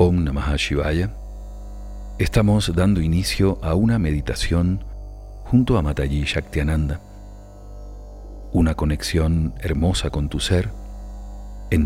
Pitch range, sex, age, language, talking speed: 75-100 Hz, male, 40-59, Spanish, 100 wpm